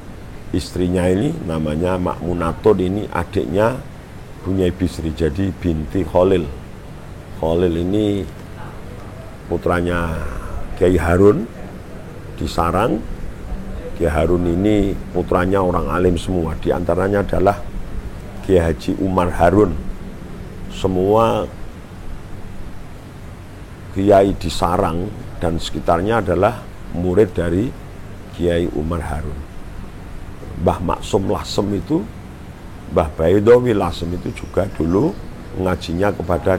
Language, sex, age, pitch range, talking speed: Indonesian, male, 50-69, 85-100 Hz, 90 wpm